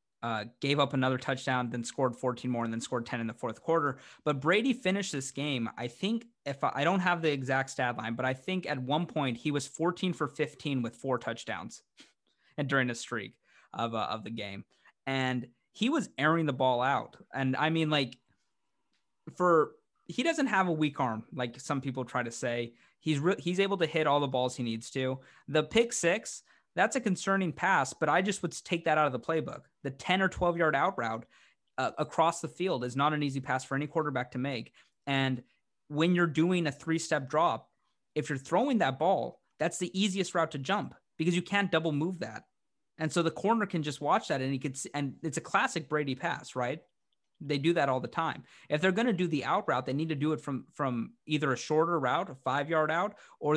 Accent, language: American, English